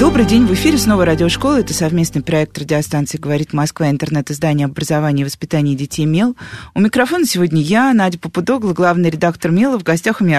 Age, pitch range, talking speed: 20-39, 155-210 Hz, 185 wpm